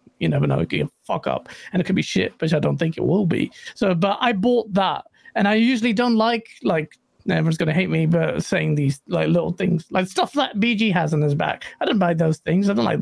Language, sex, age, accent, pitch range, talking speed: English, male, 40-59, British, 185-280 Hz, 260 wpm